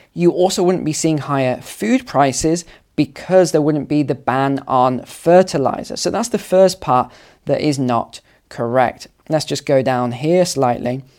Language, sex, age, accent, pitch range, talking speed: English, male, 20-39, British, 130-175 Hz, 165 wpm